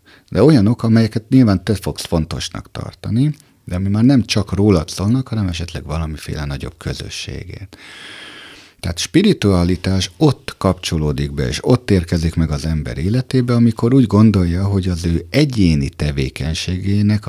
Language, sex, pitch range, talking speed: Hungarian, male, 80-110 Hz, 140 wpm